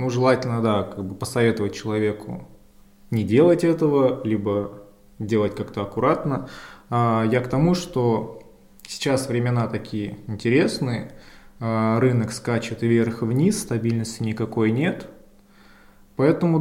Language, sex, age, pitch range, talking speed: Russian, male, 20-39, 110-135 Hz, 105 wpm